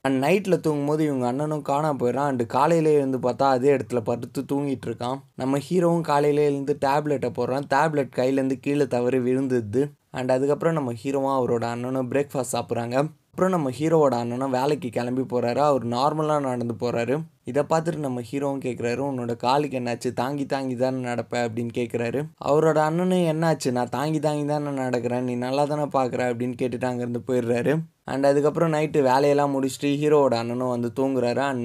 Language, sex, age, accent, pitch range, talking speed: Tamil, male, 20-39, native, 120-145 Hz, 160 wpm